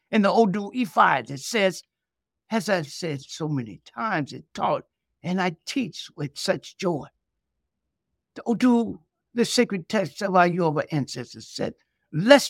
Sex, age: male, 60-79